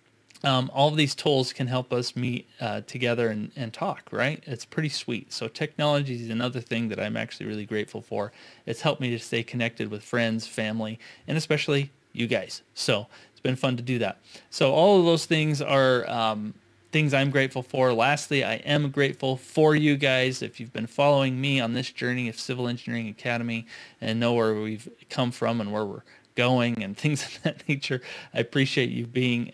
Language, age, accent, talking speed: English, 30-49, American, 200 wpm